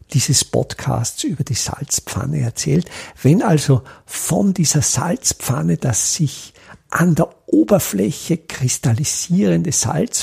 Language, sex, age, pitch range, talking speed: German, male, 50-69, 130-180 Hz, 105 wpm